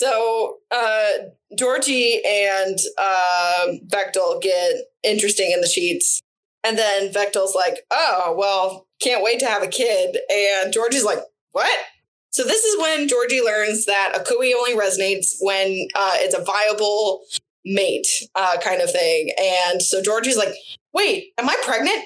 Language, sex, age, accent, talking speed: English, female, 20-39, American, 150 wpm